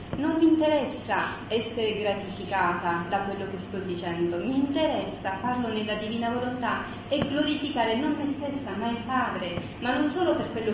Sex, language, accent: female, Italian, native